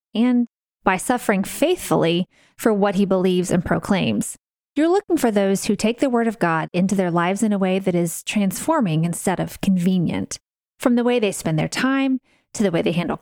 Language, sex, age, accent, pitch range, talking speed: English, female, 30-49, American, 185-240 Hz, 200 wpm